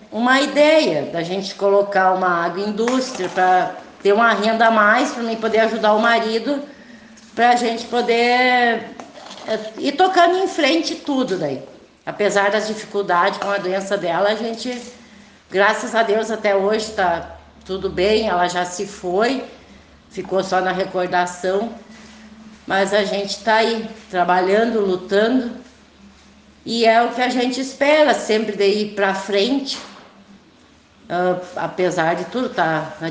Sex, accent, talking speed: female, Brazilian, 140 wpm